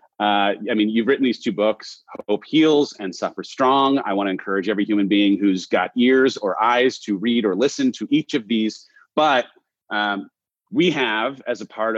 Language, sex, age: English, male, 30-49